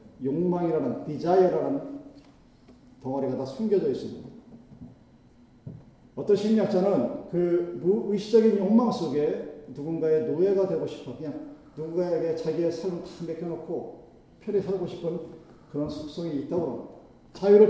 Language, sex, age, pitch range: Korean, male, 40-59, 145-210 Hz